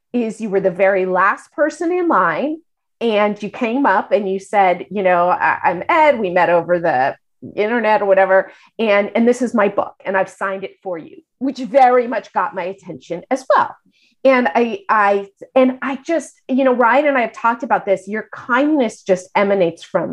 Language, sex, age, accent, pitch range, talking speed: English, female, 30-49, American, 195-265 Hz, 205 wpm